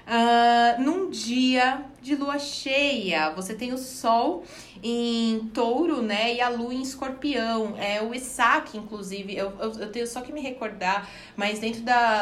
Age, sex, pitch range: 20-39, female, 195-230 Hz